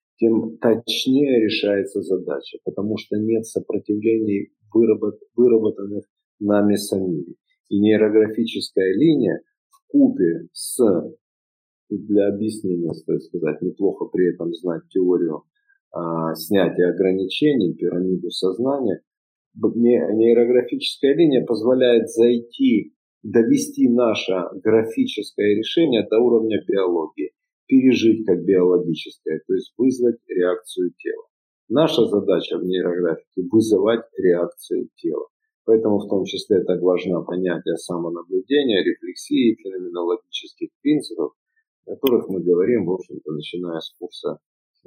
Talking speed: 100 wpm